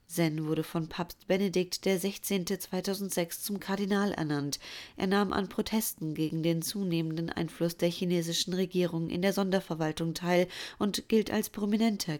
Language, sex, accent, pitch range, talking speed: German, female, German, 160-190 Hz, 145 wpm